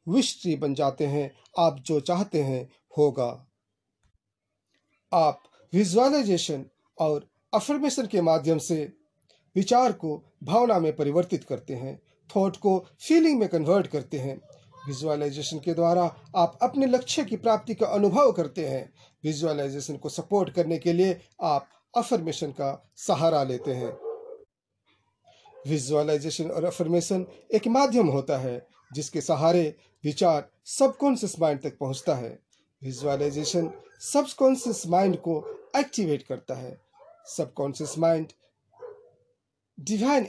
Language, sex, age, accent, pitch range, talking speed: Hindi, male, 40-59, native, 150-225 Hz, 110 wpm